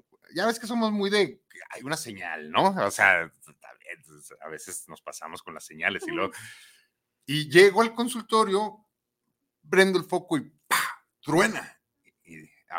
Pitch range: 115-185 Hz